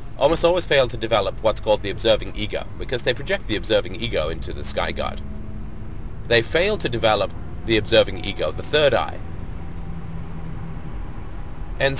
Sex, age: male, 30-49